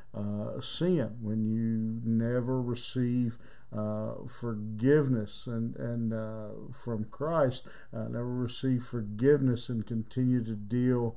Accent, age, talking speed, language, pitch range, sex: American, 50-69, 115 wpm, English, 115-130 Hz, male